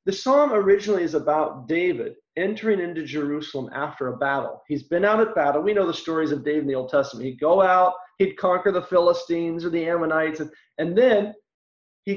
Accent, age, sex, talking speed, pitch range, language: American, 40-59, male, 200 wpm, 155-210 Hz, English